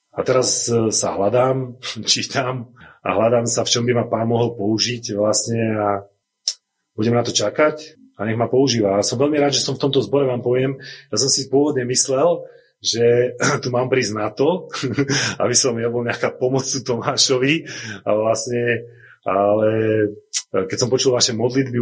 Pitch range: 110-135 Hz